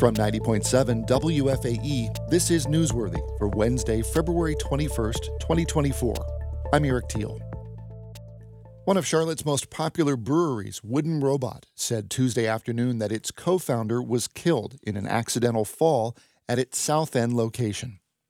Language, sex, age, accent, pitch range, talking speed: English, male, 40-59, American, 110-140 Hz, 130 wpm